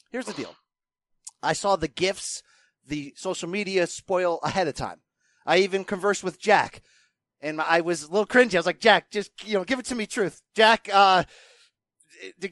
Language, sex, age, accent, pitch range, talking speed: English, male, 30-49, American, 175-260 Hz, 190 wpm